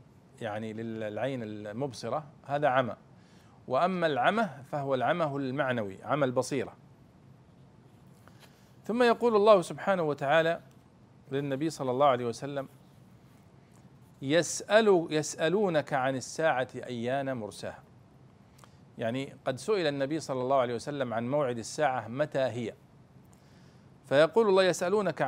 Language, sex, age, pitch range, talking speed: Arabic, male, 40-59, 130-170 Hz, 100 wpm